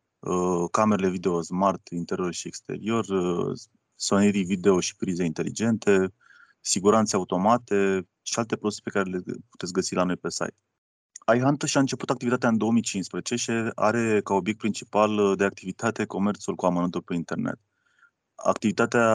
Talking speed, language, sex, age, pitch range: 140 wpm, Romanian, male, 20-39, 95-110 Hz